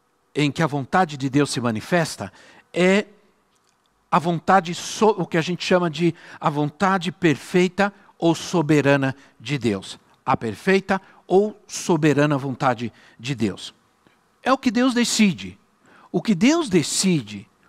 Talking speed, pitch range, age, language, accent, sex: 135 wpm, 140-200 Hz, 60-79, Portuguese, Brazilian, male